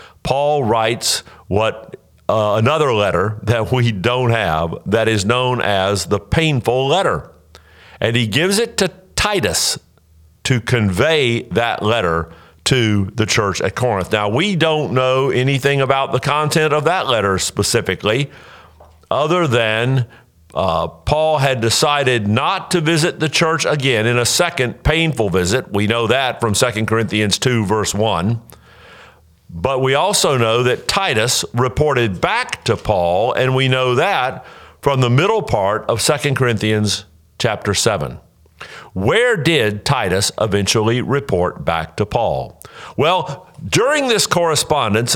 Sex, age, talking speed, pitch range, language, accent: male, 50-69, 140 wpm, 105-140 Hz, English, American